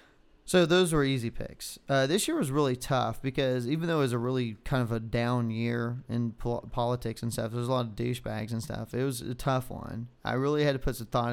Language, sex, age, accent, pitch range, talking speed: English, male, 30-49, American, 115-130 Hz, 250 wpm